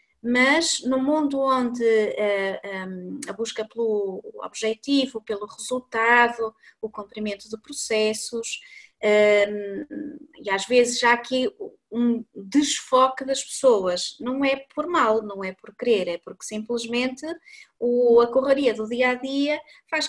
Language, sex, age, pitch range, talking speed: Portuguese, female, 20-39, 220-270 Hz, 130 wpm